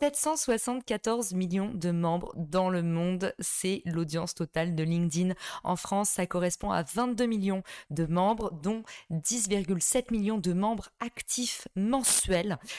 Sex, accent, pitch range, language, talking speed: female, French, 175-225 Hz, French, 130 wpm